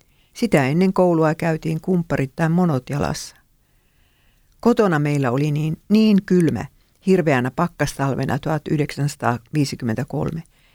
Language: Finnish